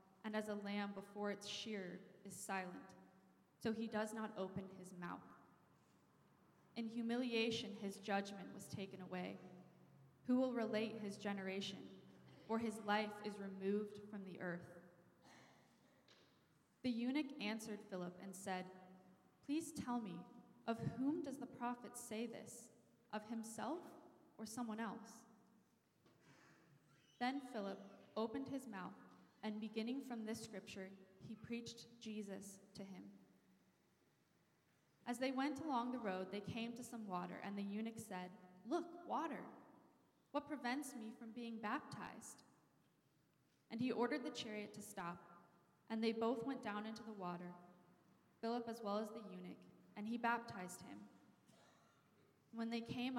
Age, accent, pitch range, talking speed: 20-39, American, 185-230 Hz, 140 wpm